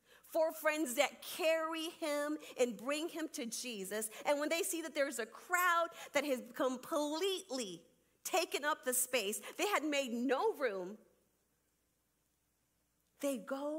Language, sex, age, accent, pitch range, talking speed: English, female, 40-59, American, 185-280 Hz, 140 wpm